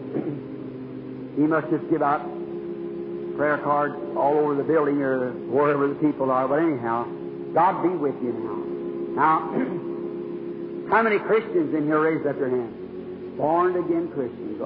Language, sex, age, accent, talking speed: English, male, 60-79, American, 145 wpm